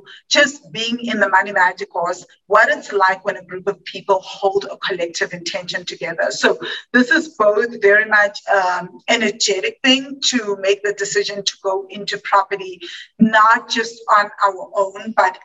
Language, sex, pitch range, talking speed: English, female, 195-240 Hz, 165 wpm